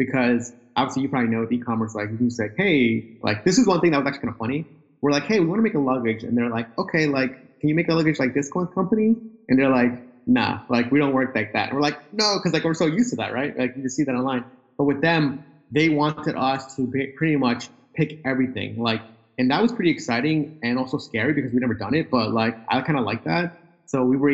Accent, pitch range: American, 115-150 Hz